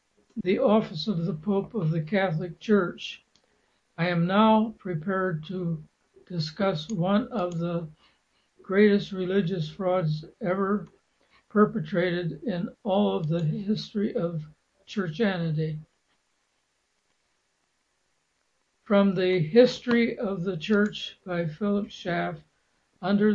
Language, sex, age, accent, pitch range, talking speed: English, male, 60-79, American, 175-210 Hz, 105 wpm